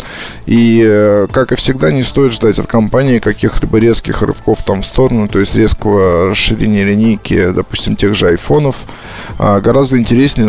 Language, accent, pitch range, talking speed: Russian, native, 100-120 Hz, 150 wpm